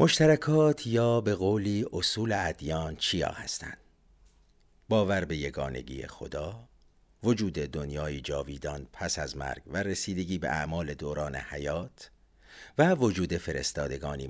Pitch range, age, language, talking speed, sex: 75-105 Hz, 50-69, Persian, 115 wpm, male